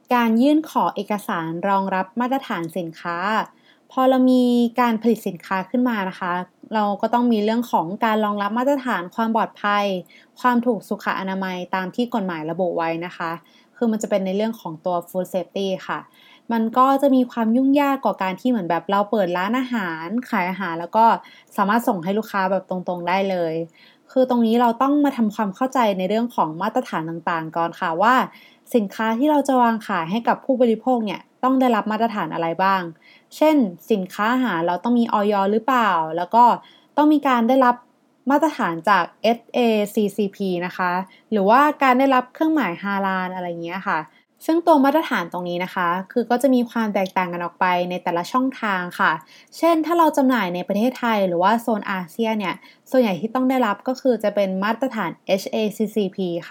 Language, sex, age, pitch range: Thai, female, 20-39, 185-250 Hz